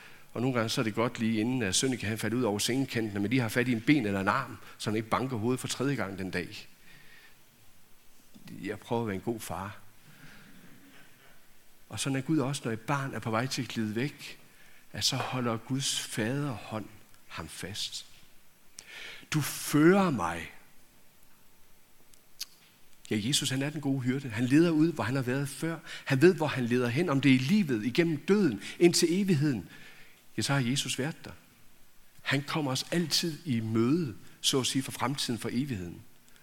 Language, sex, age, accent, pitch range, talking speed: Danish, male, 60-79, native, 115-145 Hz, 195 wpm